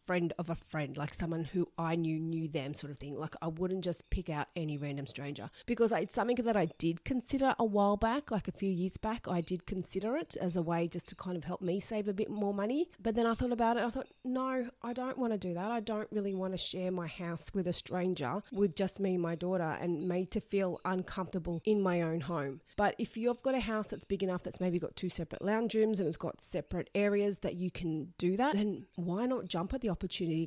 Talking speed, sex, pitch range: 255 wpm, female, 175-220 Hz